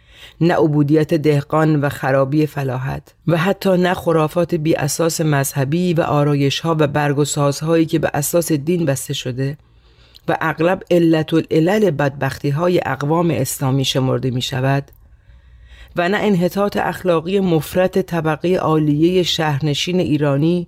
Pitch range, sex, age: 140-175 Hz, female, 40-59